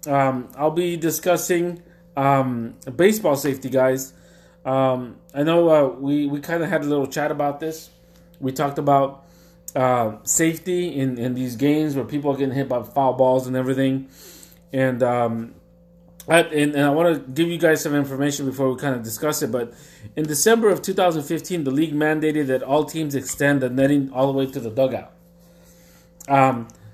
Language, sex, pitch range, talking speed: English, male, 135-175 Hz, 180 wpm